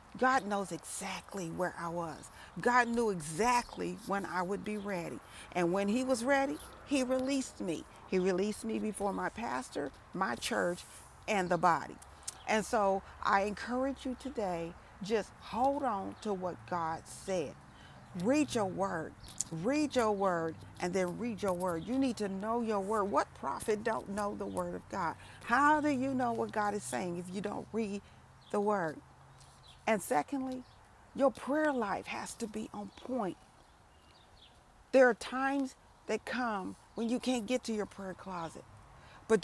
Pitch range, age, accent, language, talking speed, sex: 190-245 Hz, 40-59, American, English, 165 wpm, female